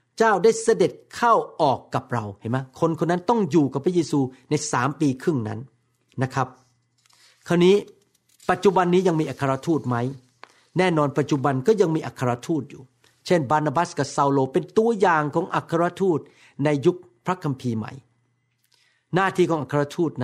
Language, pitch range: Thai, 130-185 Hz